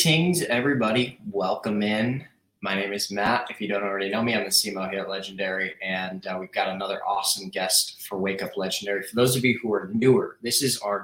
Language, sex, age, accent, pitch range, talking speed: English, male, 20-39, American, 100-125 Hz, 225 wpm